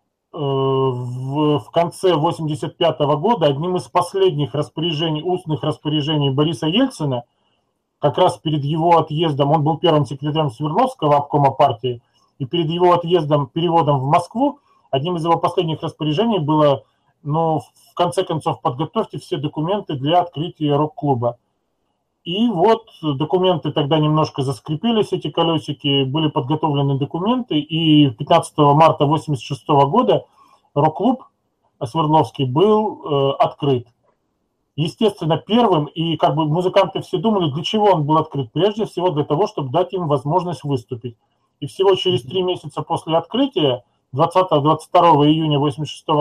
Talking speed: 130 wpm